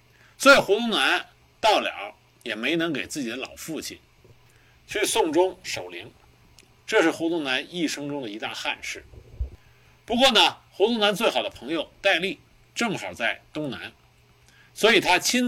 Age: 50-69